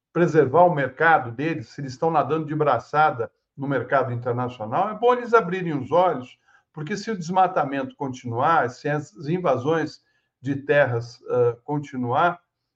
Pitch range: 135-200 Hz